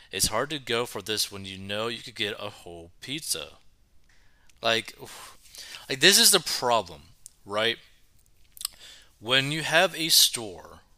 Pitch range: 100-130 Hz